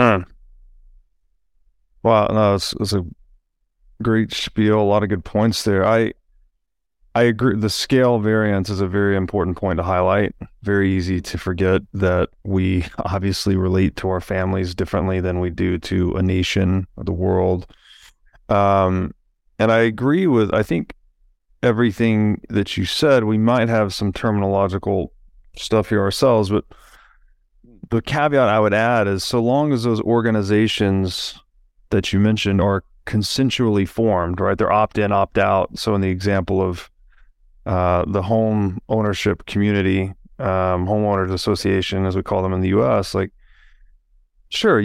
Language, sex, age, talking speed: English, male, 30-49, 150 wpm